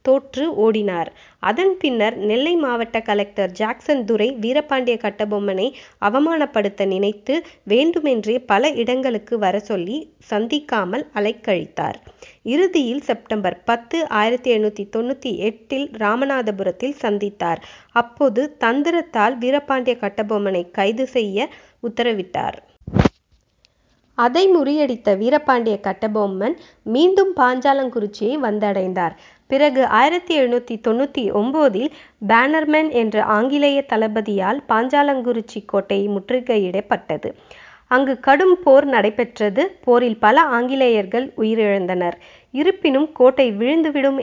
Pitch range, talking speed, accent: 215-280 Hz, 90 wpm, native